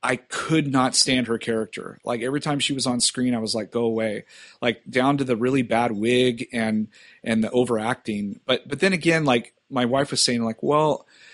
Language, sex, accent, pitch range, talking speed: English, male, American, 110-135 Hz, 210 wpm